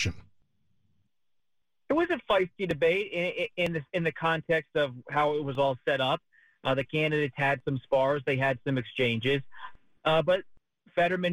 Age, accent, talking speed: 30-49, American, 155 wpm